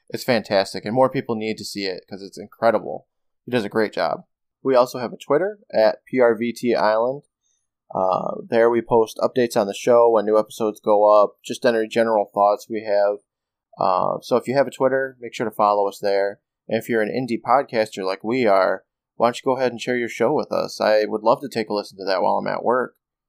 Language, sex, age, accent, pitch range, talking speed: English, male, 20-39, American, 105-120 Hz, 230 wpm